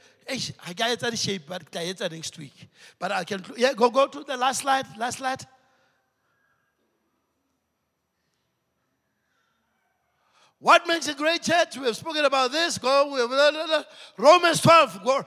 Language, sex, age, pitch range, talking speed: English, male, 60-79, 165-260 Hz, 155 wpm